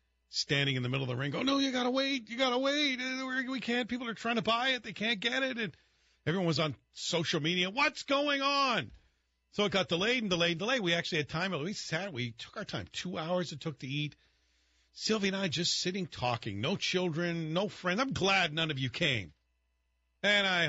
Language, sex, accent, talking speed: English, male, American, 235 wpm